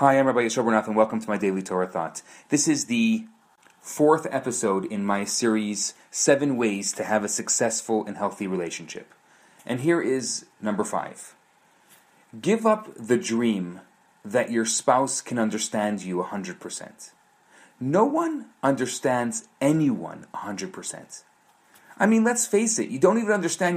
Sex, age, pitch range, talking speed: male, 30-49, 115-180 Hz, 155 wpm